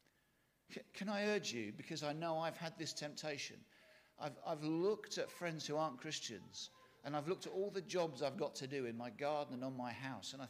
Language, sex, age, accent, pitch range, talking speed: English, male, 50-69, British, 135-175 Hz, 225 wpm